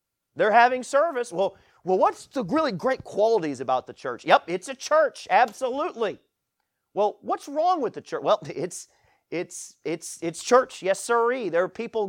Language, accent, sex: English, American, male